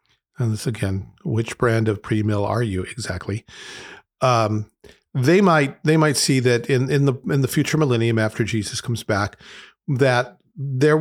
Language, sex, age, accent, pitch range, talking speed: English, male, 50-69, American, 115-145 Hz, 165 wpm